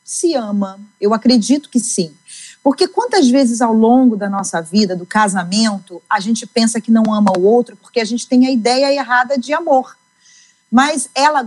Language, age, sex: Portuguese, 40-59, female